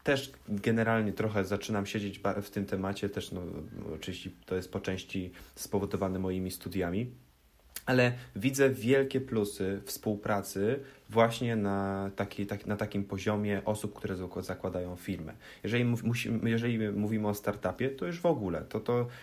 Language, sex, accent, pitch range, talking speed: Polish, male, native, 95-110 Hz, 130 wpm